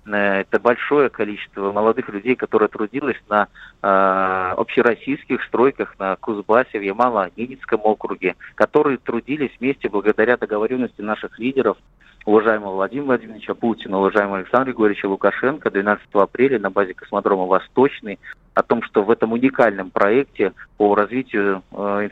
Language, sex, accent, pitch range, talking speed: Russian, male, native, 100-120 Hz, 130 wpm